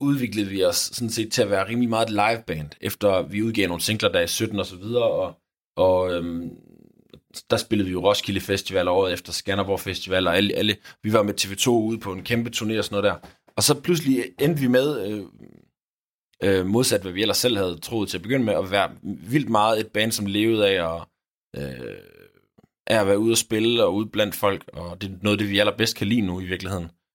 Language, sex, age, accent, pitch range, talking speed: Danish, male, 20-39, native, 90-110 Hz, 225 wpm